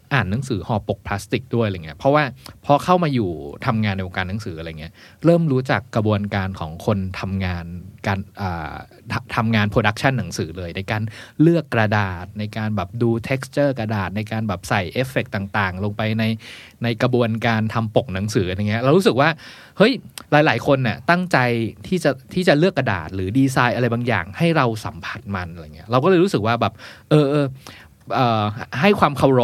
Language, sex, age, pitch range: Thai, male, 20-39, 105-135 Hz